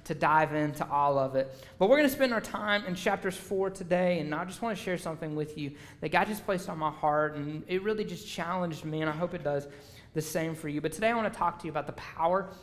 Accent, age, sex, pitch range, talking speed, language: American, 30-49, male, 150-190 Hz, 280 wpm, English